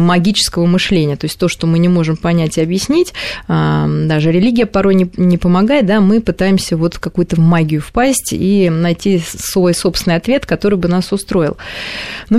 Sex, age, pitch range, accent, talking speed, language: female, 20-39, 170-200 Hz, native, 170 wpm, Russian